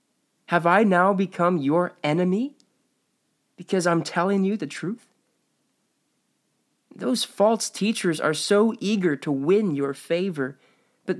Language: English